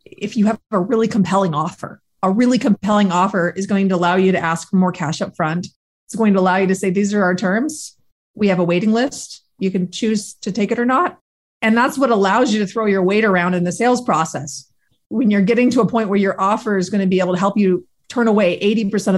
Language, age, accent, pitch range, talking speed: English, 30-49, American, 180-220 Hz, 255 wpm